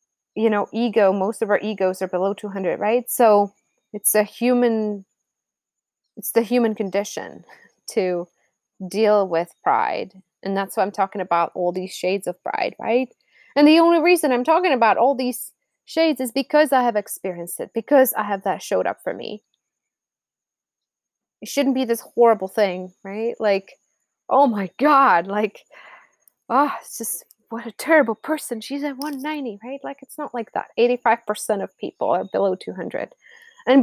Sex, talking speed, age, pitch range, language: female, 165 wpm, 20-39, 195-265 Hz, English